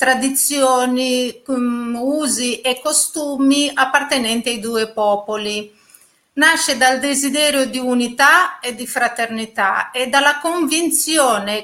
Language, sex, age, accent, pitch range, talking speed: Italian, female, 40-59, native, 230-290 Hz, 100 wpm